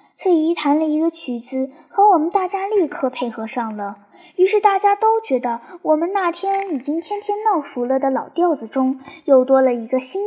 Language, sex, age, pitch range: Chinese, male, 10-29, 260-355 Hz